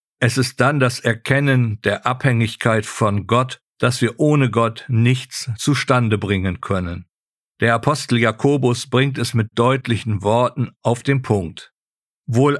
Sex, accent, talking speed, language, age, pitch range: male, German, 140 wpm, German, 50-69, 115-135 Hz